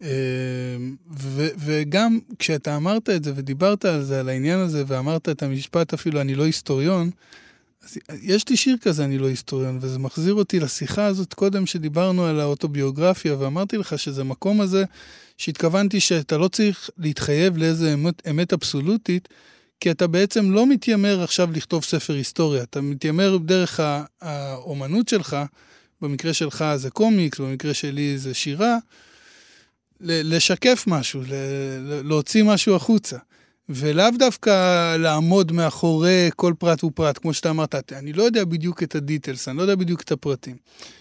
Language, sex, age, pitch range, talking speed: Hebrew, male, 20-39, 140-185 Hz, 145 wpm